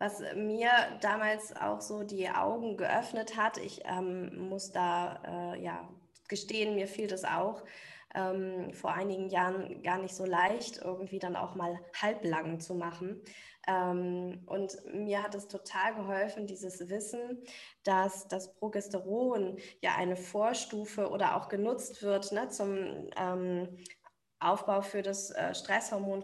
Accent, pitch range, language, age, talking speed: German, 180-210 Hz, German, 10-29, 140 wpm